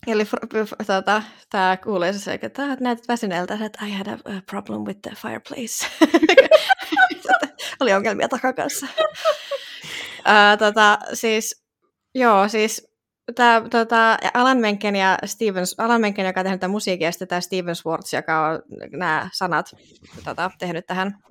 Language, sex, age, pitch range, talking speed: Finnish, female, 20-39, 170-210 Hz, 100 wpm